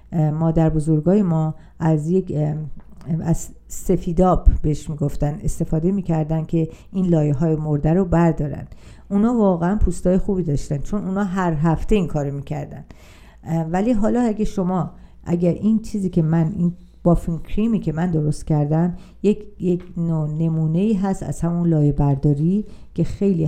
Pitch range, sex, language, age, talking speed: 155-195 Hz, female, Persian, 50-69, 150 wpm